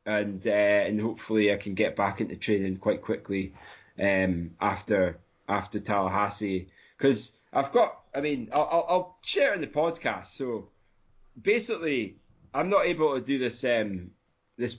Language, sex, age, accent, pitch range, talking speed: English, male, 20-39, British, 95-120 Hz, 155 wpm